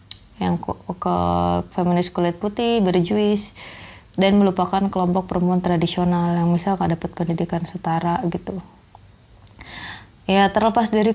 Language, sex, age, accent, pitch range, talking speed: Indonesian, female, 20-39, native, 170-200 Hz, 115 wpm